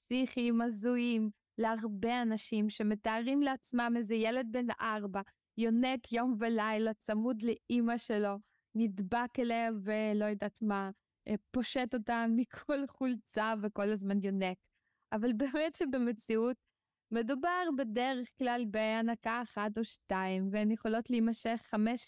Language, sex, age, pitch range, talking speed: Hebrew, female, 20-39, 215-245 Hz, 110 wpm